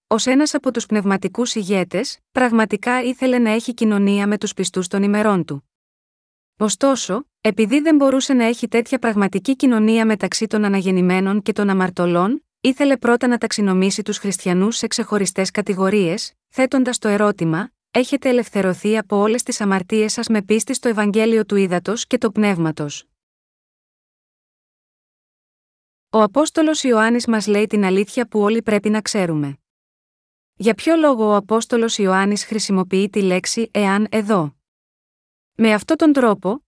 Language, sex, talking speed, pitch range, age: Greek, female, 140 wpm, 195-240 Hz, 20-39